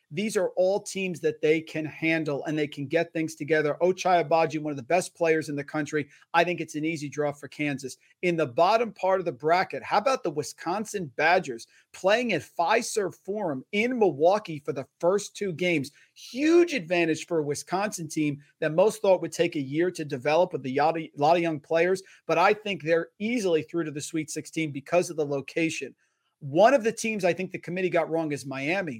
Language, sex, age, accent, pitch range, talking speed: English, male, 40-59, American, 155-190 Hz, 215 wpm